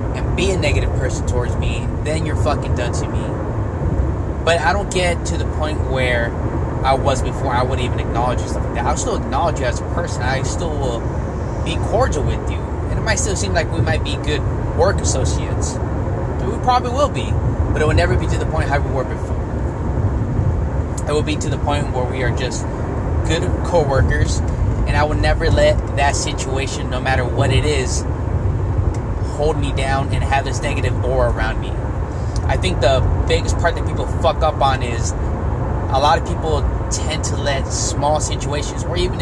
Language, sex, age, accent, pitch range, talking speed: English, male, 20-39, American, 80-105 Hz, 195 wpm